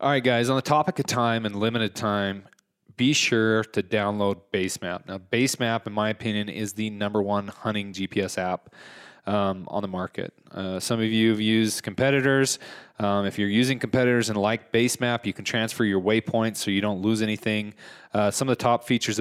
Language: English